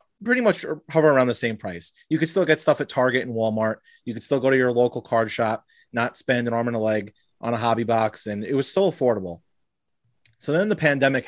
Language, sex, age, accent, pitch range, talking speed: English, male, 30-49, American, 115-145 Hz, 240 wpm